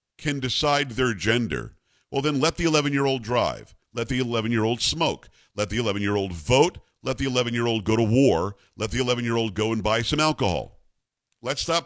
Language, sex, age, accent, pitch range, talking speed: English, male, 50-69, American, 115-155 Hz, 170 wpm